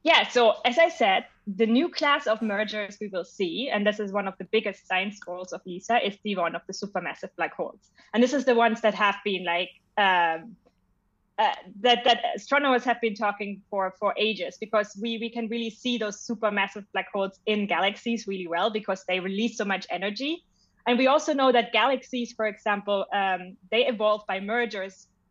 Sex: female